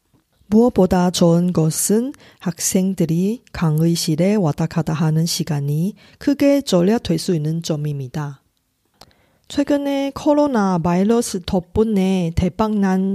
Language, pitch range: Korean, 170-215 Hz